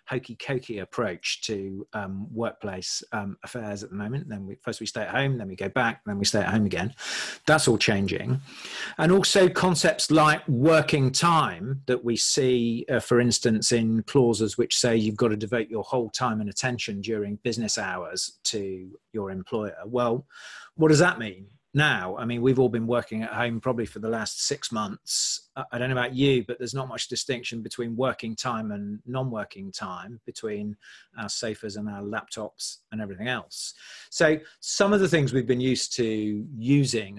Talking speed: 185 wpm